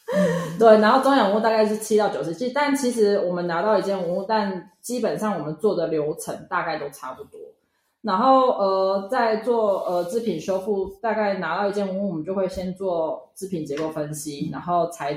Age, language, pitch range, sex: 20-39, Chinese, 165-220 Hz, female